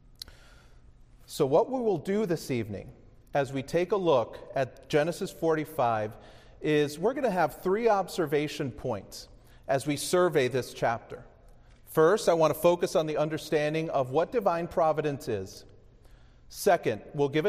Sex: male